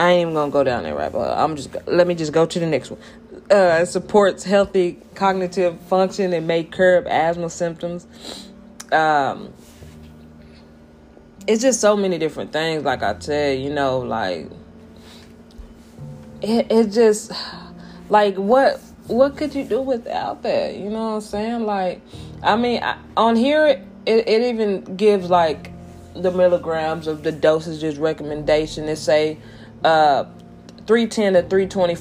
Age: 20-39